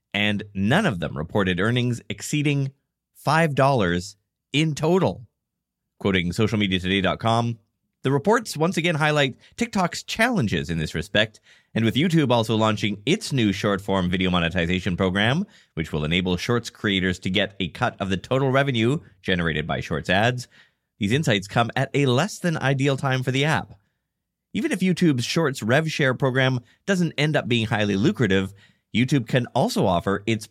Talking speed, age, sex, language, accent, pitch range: 155 wpm, 30-49, male, English, American, 95-135 Hz